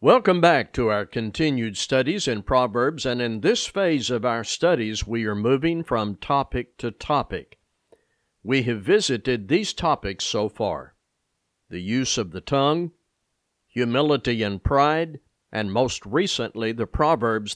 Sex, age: male, 50-69